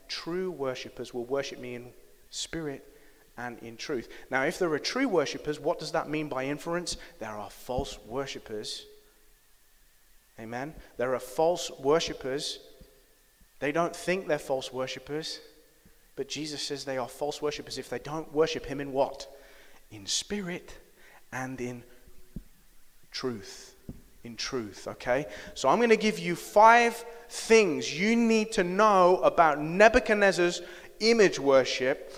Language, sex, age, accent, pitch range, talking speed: English, male, 30-49, British, 135-205 Hz, 140 wpm